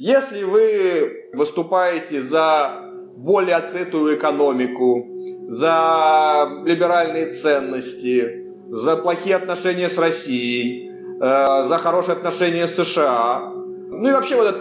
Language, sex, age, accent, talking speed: Russian, male, 30-49, native, 105 wpm